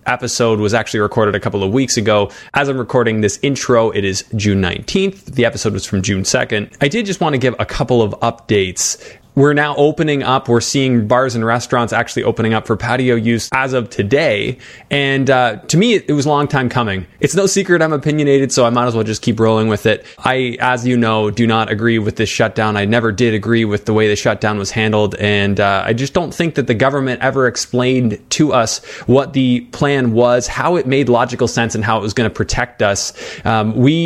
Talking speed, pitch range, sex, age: 230 wpm, 110-135 Hz, male, 20-39